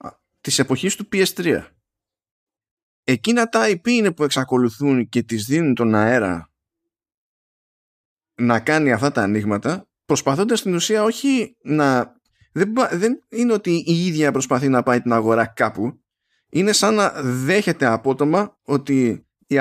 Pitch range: 115-185 Hz